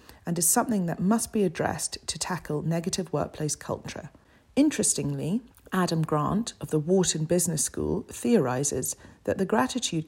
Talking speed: 145 wpm